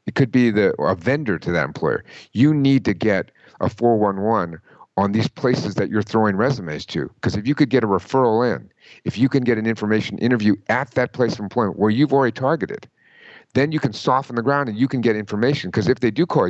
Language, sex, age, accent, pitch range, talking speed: English, male, 50-69, American, 105-135 Hz, 230 wpm